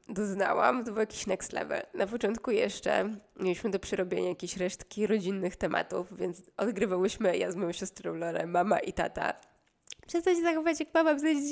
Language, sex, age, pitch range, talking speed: Polish, female, 20-39, 185-240 Hz, 165 wpm